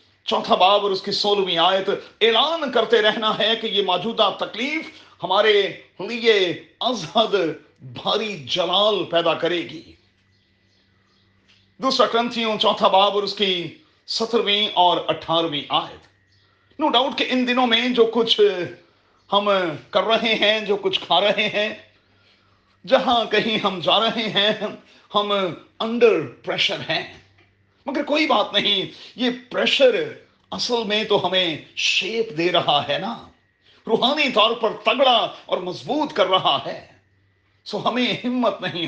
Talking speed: 140 wpm